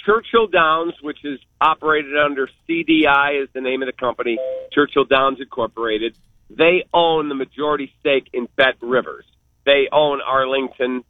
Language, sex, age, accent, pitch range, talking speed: English, male, 50-69, American, 130-170 Hz, 145 wpm